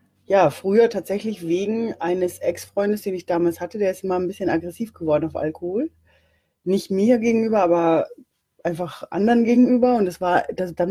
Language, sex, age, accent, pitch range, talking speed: German, female, 30-49, German, 175-220 Hz, 170 wpm